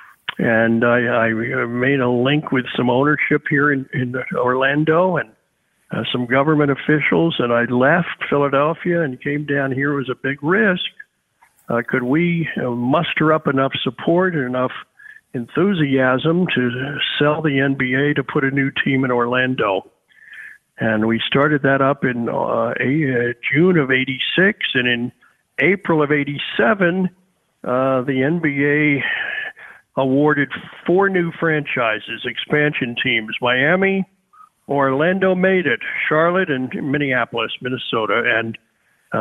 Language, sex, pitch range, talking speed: English, male, 125-155 Hz, 140 wpm